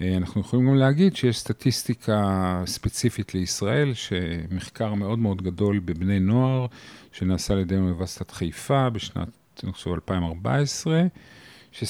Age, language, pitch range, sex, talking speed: 40-59, Hebrew, 95-130 Hz, male, 110 wpm